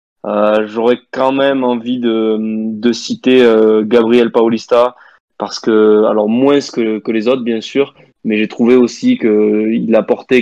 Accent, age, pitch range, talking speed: French, 20-39, 110-120 Hz, 165 wpm